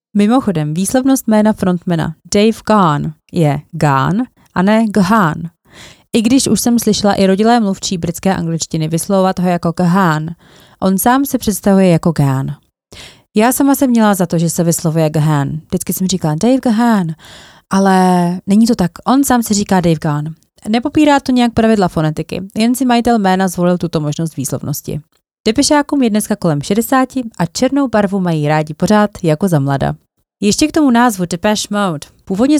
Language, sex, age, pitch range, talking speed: Czech, female, 30-49, 160-215 Hz, 165 wpm